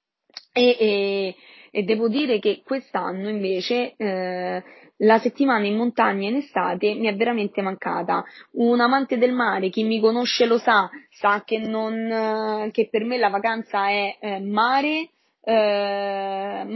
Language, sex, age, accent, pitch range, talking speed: Italian, female, 20-39, native, 200-230 Hz, 145 wpm